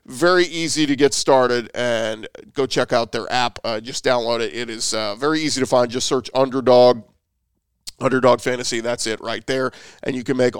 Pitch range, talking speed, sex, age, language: 125-145 Hz, 200 wpm, male, 40-59, English